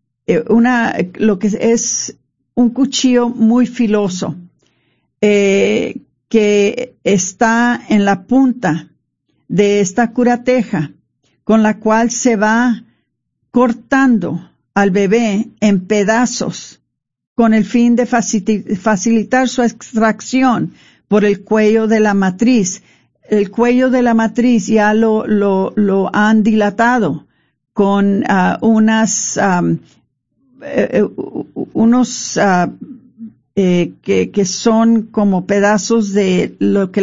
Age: 50-69